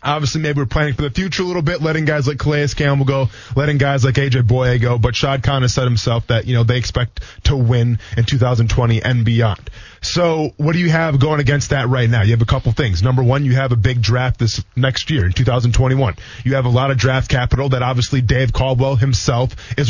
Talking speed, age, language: 240 wpm, 20-39, English